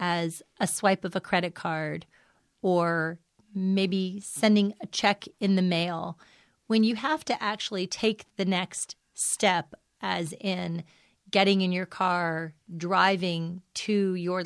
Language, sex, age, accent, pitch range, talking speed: English, female, 30-49, American, 170-195 Hz, 135 wpm